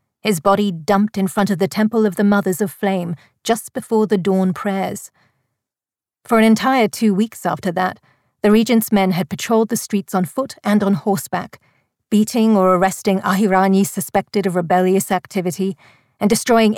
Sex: female